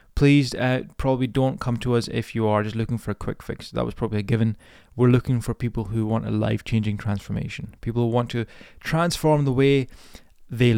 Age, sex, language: 20-39, male, English